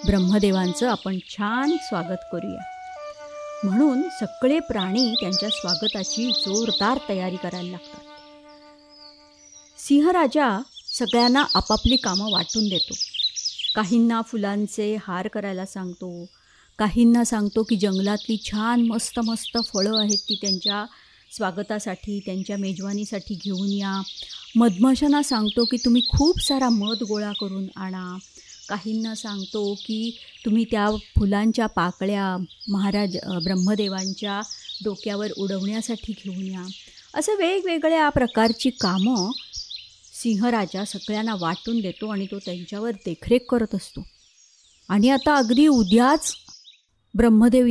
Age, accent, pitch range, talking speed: 30-49, native, 200-250 Hz, 105 wpm